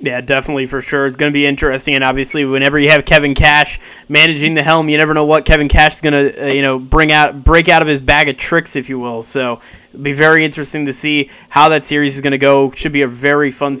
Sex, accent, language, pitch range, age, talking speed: male, American, English, 135-160 Hz, 20-39, 270 wpm